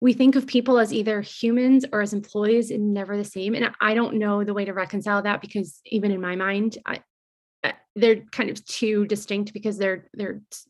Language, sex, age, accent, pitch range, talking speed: English, female, 20-39, American, 205-240 Hz, 200 wpm